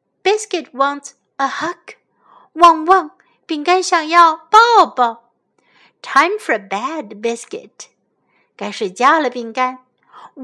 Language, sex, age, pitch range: Chinese, female, 60-79, 255-350 Hz